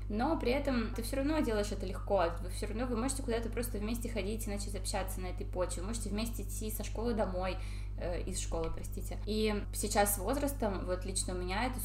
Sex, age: female, 20-39